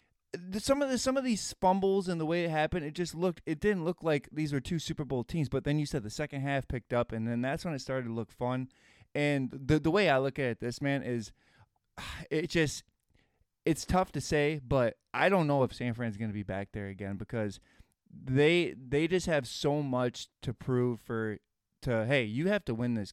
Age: 20-39